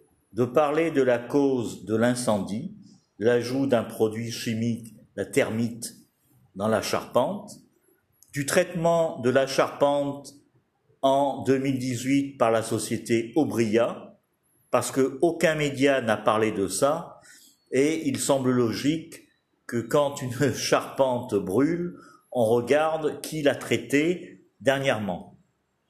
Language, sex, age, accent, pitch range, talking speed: French, male, 50-69, French, 120-155 Hz, 115 wpm